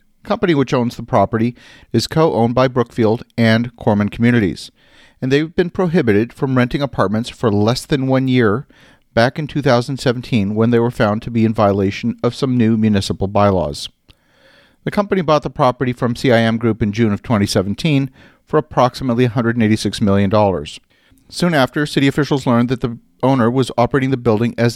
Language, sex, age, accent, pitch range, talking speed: English, male, 40-59, American, 110-130 Hz, 170 wpm